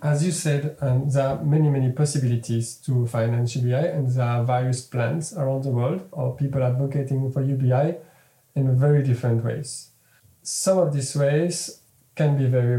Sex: male